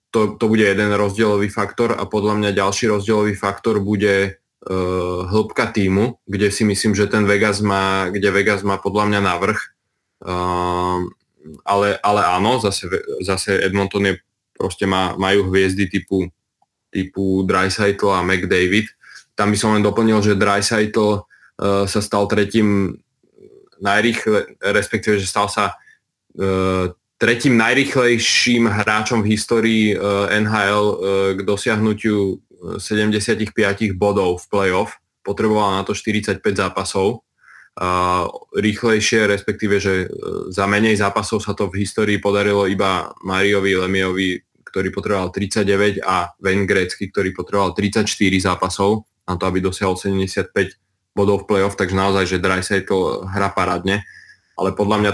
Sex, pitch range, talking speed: male, 95-105 Hz, 130 wpm